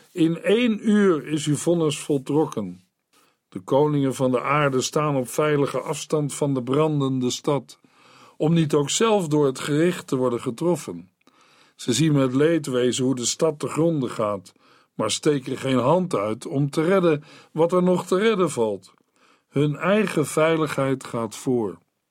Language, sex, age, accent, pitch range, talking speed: Dutch, male, 50-69, Dutch, 135-175 Hz, 160 wpm